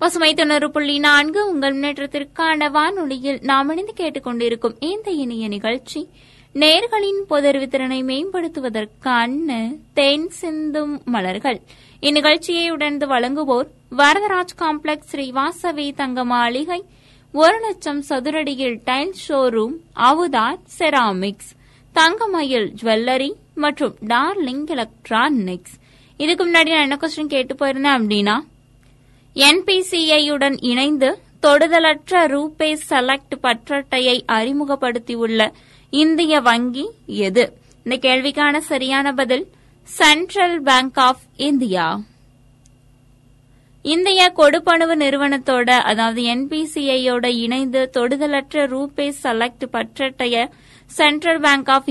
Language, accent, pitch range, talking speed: Tamil, native, 250-310 Hz, 85 wpm